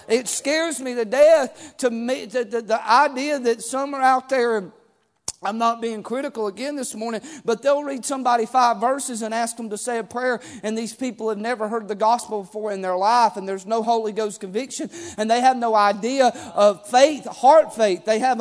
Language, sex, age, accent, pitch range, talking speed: English, male, 40-59, American, 245-310 Hz, 205 wpm